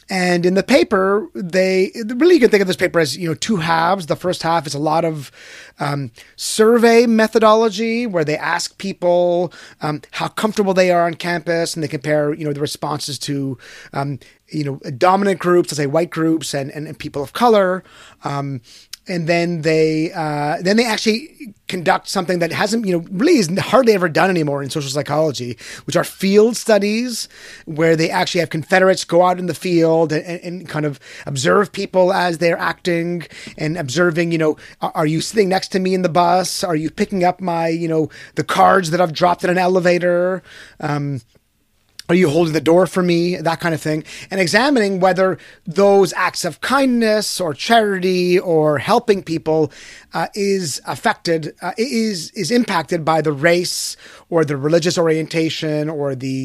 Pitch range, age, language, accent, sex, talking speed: 155-190 Hz, 30-49, English, American, male, 185 wpm